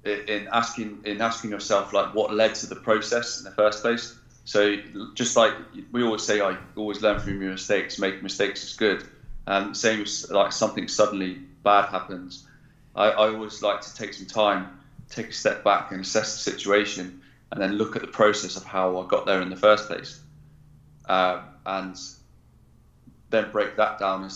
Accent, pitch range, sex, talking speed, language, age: British, 95-110 Hz, male, 190 wpm, English, 30-49